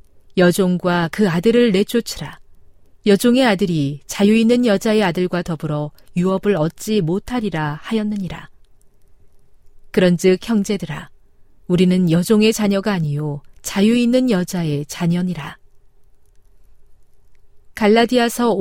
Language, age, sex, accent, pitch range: Korean, 40-59, female, native, 150-215 Hz